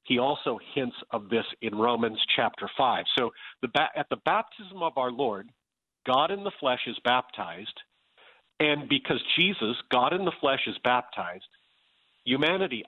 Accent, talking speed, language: American, 150 wpm, English